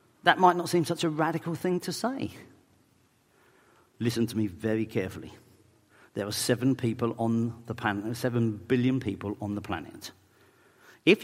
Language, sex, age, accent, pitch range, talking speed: English, male, 50-69, British, 115-180 Hz, 155 wpm